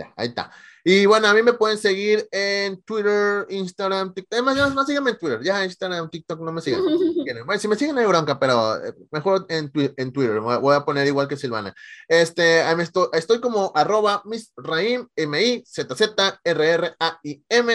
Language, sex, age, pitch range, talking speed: English, male, 20-39, 140-195 Hz, 165 wpm